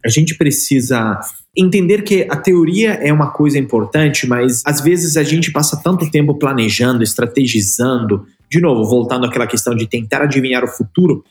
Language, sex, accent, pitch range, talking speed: Portuguese, male, Brazilian, 110-165 Hz, 165 wpm